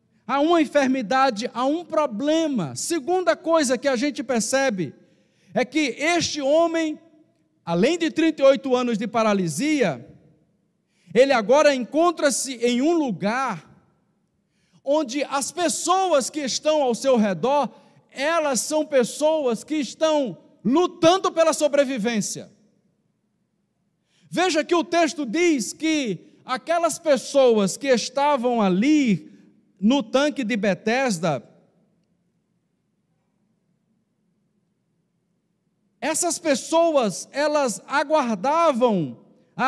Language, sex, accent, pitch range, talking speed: Portuguese, male, Brazilian, 195-300 Hz, 95 wpm